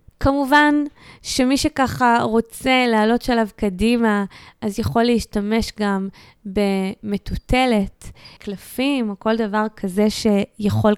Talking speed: 100 wpm